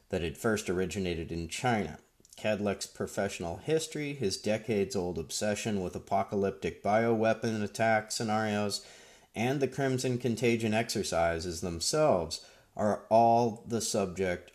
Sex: male